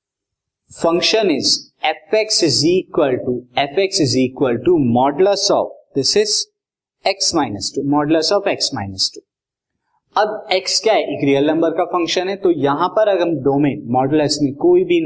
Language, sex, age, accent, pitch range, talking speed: Hindi, male, 20-39, native, 140-215 Hz, 135 wpm